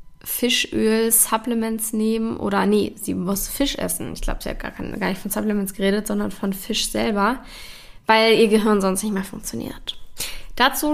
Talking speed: 165 wpm